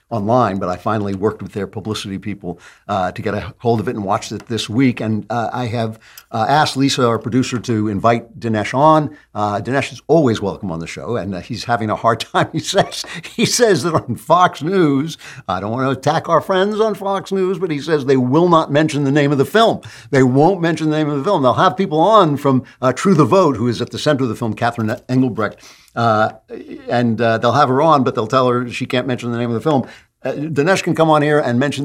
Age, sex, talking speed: 60-79, male, 250 wpm